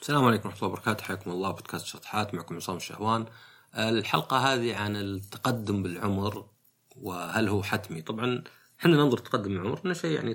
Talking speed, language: 160 wpm, Arabic